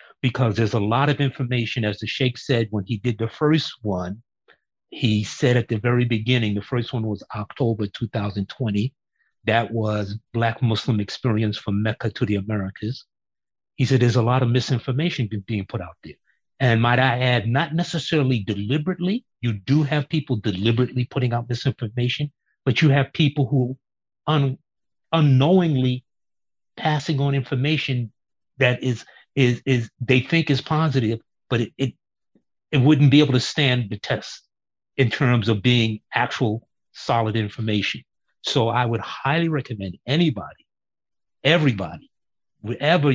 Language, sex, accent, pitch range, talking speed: English, male, American, 110-135 Hz, 150 wpm